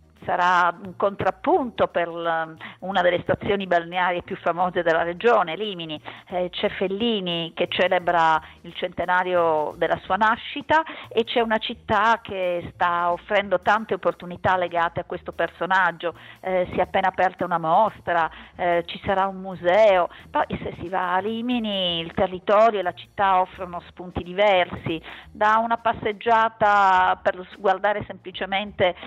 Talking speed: 140 wpm